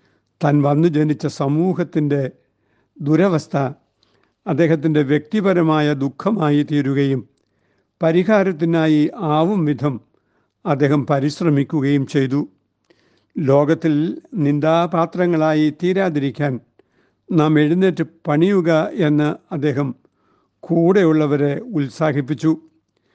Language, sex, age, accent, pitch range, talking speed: Malayalam, male, 60-79, native, 145-175 Hz, 65 wpm